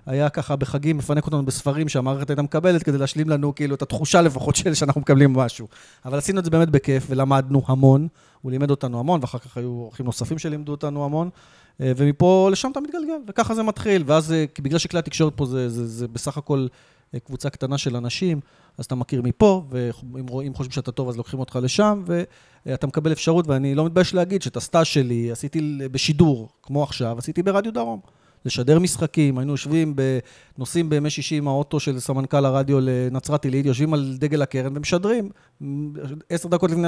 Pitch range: 130-165 Hz